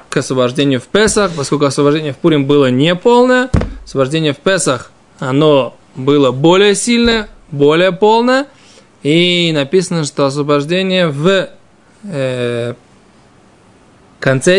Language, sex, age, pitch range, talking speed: Russian, male, 20-39, 145-200 Hz, 105 wpm